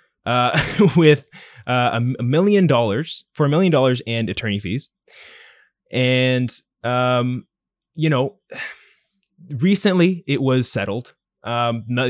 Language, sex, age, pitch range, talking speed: English, male, 20-39, 105-135 Hz, 110 wpm